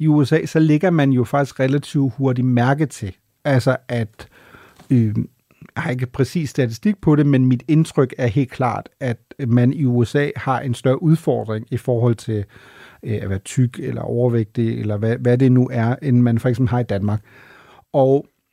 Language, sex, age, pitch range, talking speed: Danish, male, 40-59, 120-150 Hz, 185 wpm